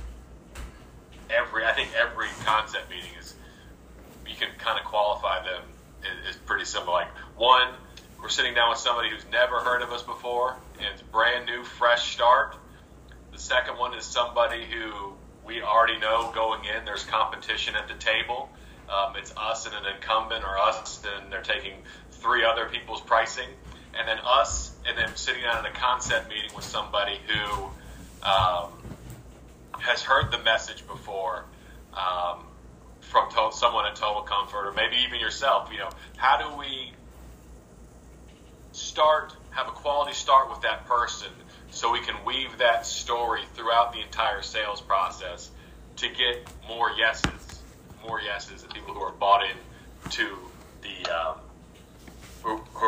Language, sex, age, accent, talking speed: English, male, 40-59, American, 155 wpm